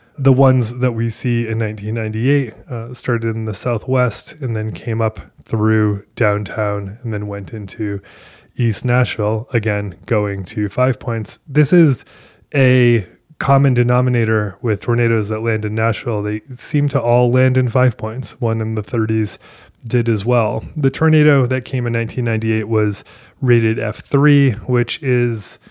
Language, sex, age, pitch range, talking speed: English, male, 20-39, 110-130 Hz, 155 wpm